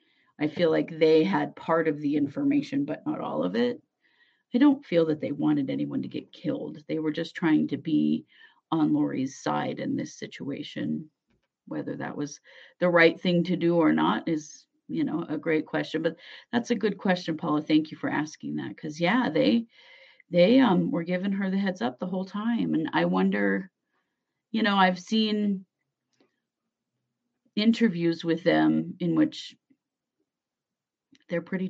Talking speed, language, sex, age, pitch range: 170 wpm, English, female, 40-59, 155-240 Hz